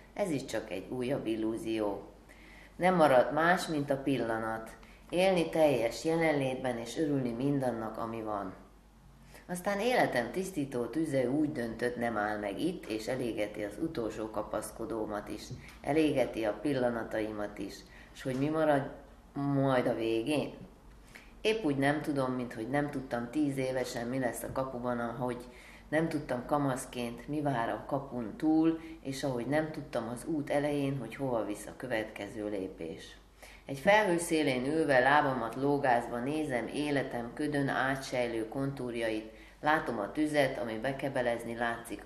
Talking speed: 140 wpm